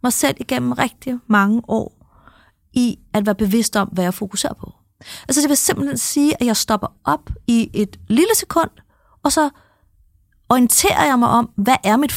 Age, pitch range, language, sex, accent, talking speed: 30-49, 190-255 Hz, Danish, female, native, 185 wpm